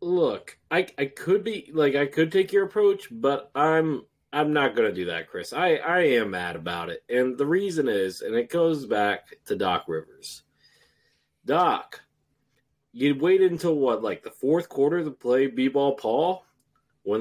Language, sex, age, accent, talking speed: English, male, 30-49, American, 180 wpm